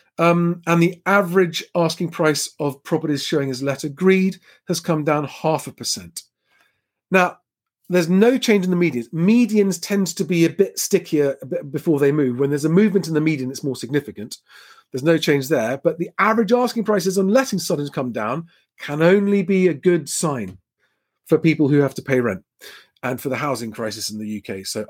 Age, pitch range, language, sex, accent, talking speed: 40-59, 145-185 Hz, English, male, British, 195 wpm